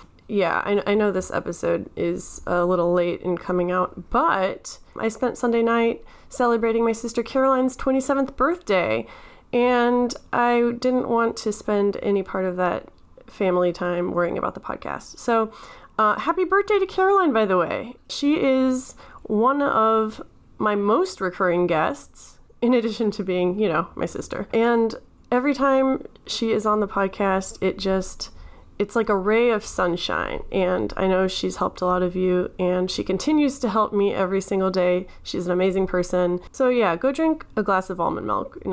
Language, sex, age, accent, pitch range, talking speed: English, female, 30-49, American, 185-245 Hz, 175 wpm